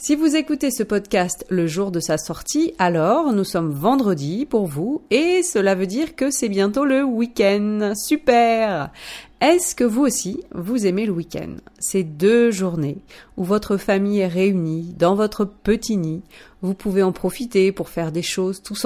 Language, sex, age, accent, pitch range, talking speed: French, female, 30-49, French, 180-245 Hz, 175 wpm